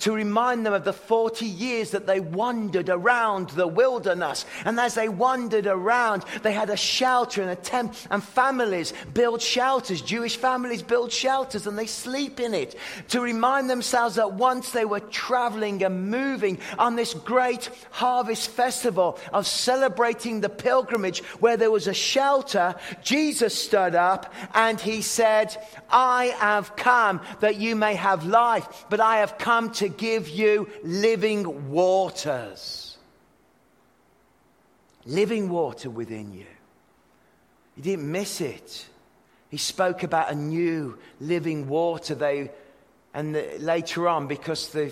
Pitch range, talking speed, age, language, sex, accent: 170-235 Hz, 145 wpm, 30-49, English, male, British